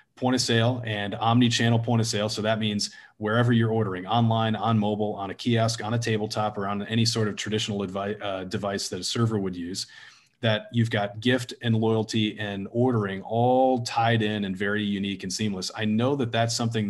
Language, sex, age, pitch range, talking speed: English, male, 40-59, 100-115 Hz, 205 wpm